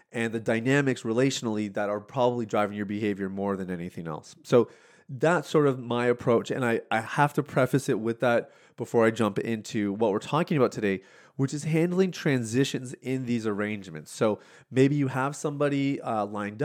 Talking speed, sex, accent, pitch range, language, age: 185 wpm, male, American, 110-140 Hz, English, 30-49